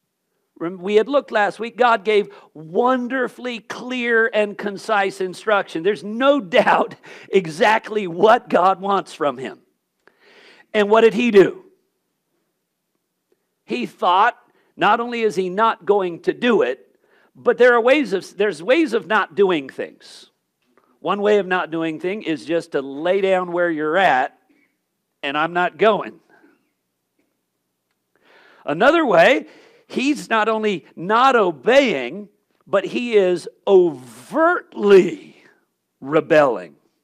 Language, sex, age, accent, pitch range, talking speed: English, male, 50-69, American, 185-250 Hz, 125 wpm